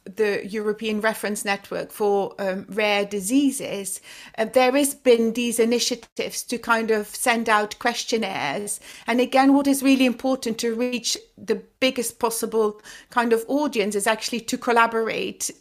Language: English